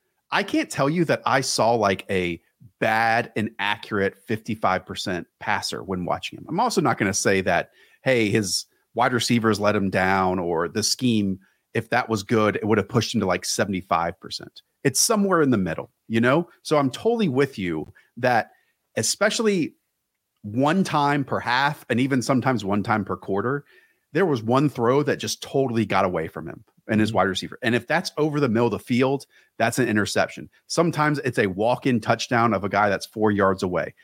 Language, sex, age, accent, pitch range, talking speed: English, male, 40-59, American, 100-135 Hz, 195 wpm